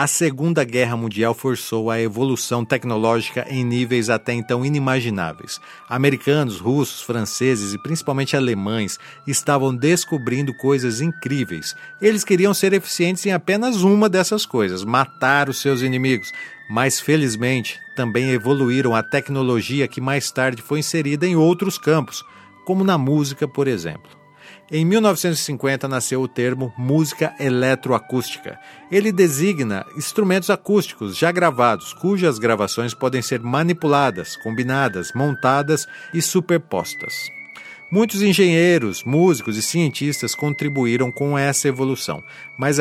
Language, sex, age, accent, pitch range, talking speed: Portuguese, male, 50-69, Brazilian, 125-165 Hz, 120 wpm